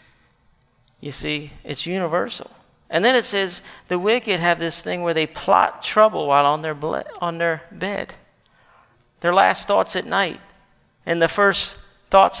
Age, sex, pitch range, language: 50-69, male, 145-170 Hz, English